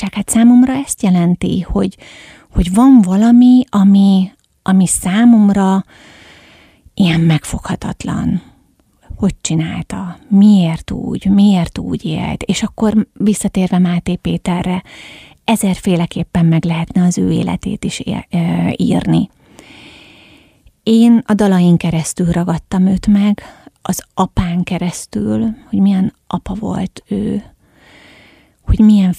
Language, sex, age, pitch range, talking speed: Hungarian, female, 30-49, 175-205 Hz, 100 wpm